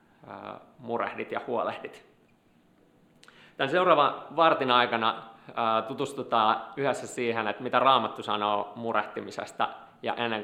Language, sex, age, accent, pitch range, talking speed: Finnish, male, 30-49, native, 105-125 Hz, 100 wpm